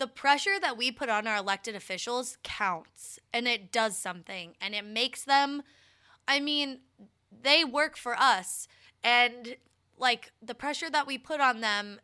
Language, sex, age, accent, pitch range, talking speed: English, female, 20-39, American, 200-250 Hz, 165 wpm